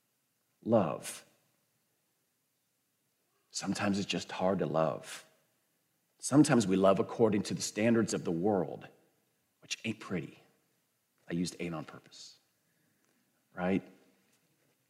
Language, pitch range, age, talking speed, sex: English, 100-150 Hz, 40-59, 105 wpm, male